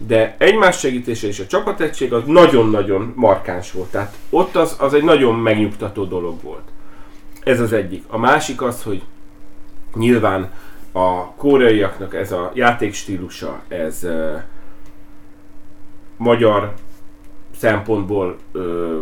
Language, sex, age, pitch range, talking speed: Hungarian, male, 30-49, 100-115 Hz, 110 wpm